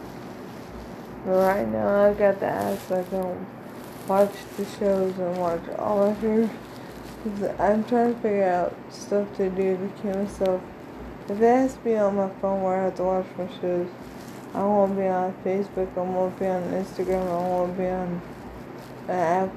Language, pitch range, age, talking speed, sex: English, 175-195 Hz, 20-39, 185 wpm, female